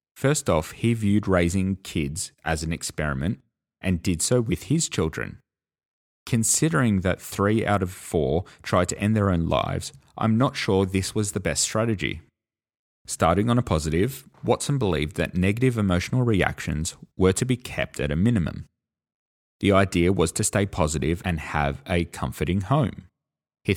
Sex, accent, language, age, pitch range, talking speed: male, Australian, English, 30-49, 80-110 Hz, 160 wpm